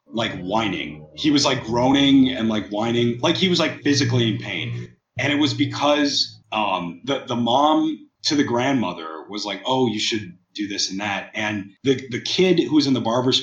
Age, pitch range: 30-49, 115-150 Hz